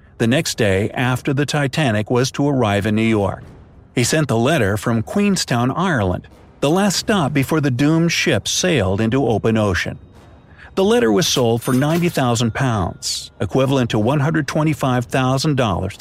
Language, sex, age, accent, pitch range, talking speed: English, male, 50-69, American, 105-150 Hz, 145 wpm